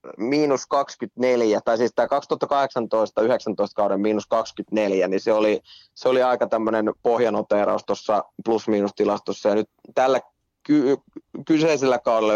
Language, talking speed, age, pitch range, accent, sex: Finnish, 120 wpm, 20-39, 105-135 Hz, native, male